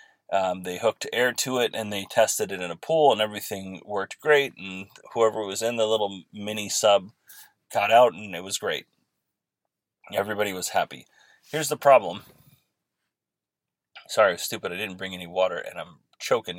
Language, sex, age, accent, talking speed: English, male, 30-49, American, 175 wpm